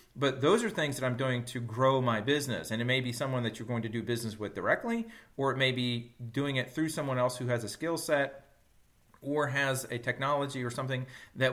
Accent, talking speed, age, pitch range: American, 235 wpm, 40-59, 115-140 Hz